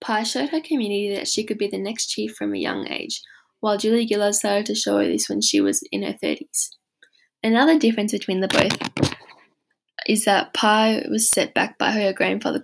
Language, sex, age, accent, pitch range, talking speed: English, female, 10-29, Australian, 195-230 Hz, 205 wpm